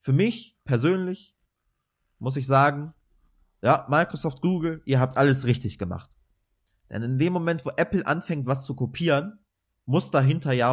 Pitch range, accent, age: 100-135 Hz, German, 20-39